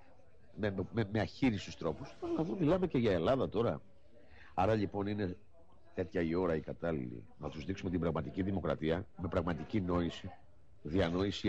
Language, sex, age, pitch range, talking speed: Greek, male, 60-79, 95-125 Hz, 150 wpm